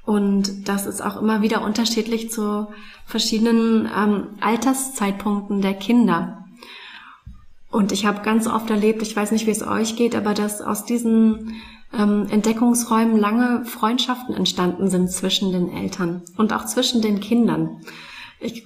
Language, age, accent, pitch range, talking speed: German, 30-49, German, 195-225 Hz, 145 wpm